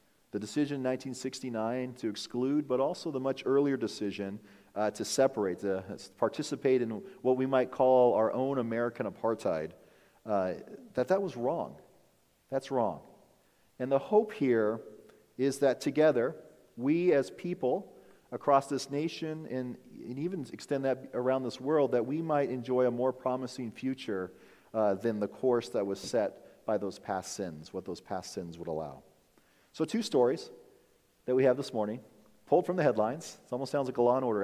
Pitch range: 110-140 Hz